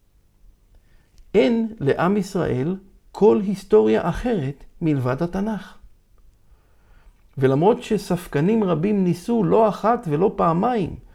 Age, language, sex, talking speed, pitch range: 50-69, Hebrew, male, 85 wpm, 120-195 Hz